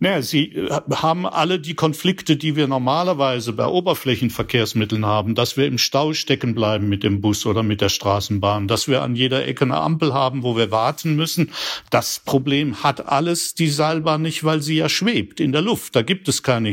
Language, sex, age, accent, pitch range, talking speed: German, male, 60-79, German, 115-155 Hz, 195 wpm